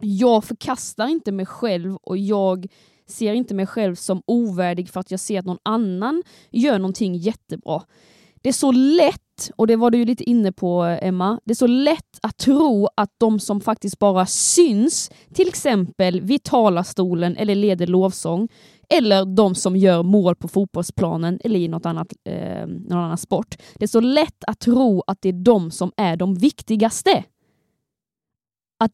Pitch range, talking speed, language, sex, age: 190-240 Hz, 175 wpm, Swedish, female, 20-39